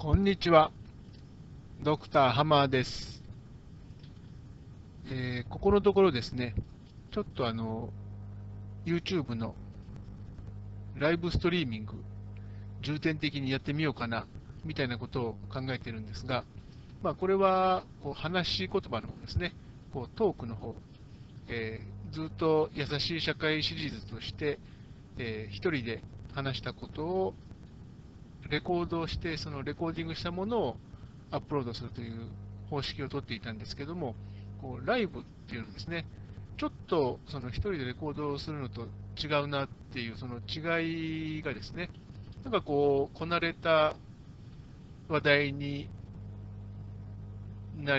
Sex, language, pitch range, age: male, Japanese, 105-150 Hz, 60-79